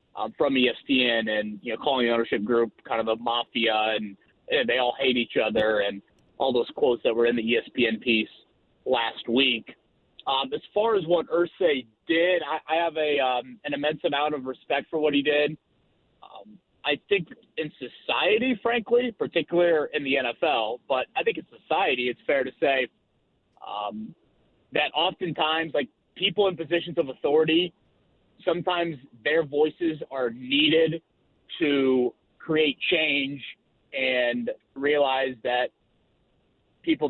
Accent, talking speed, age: American, 155 wpm, 30-49